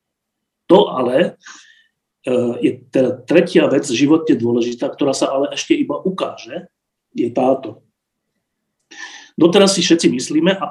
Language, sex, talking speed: Slovak, male, 125 wpm